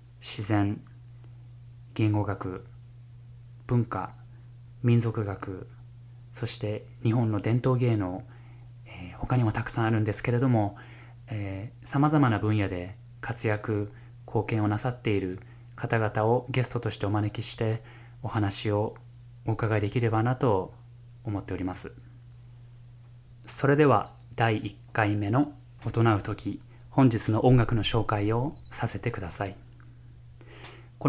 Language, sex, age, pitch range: Japanese, male, 20-39, 110-125 Hz